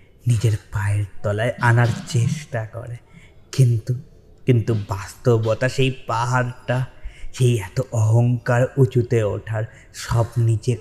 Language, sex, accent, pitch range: Bengali, male, native, 110-130 Hz